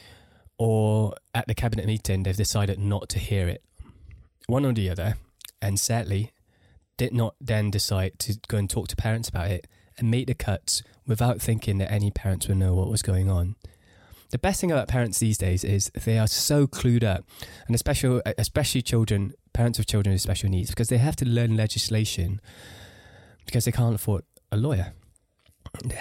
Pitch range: 100-115 Hz